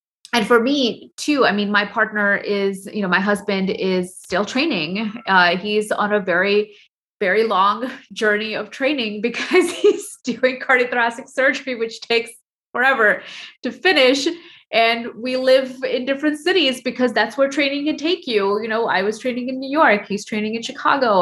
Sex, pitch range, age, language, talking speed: female, 190-245 Hz, 20-39, English, 175 wpm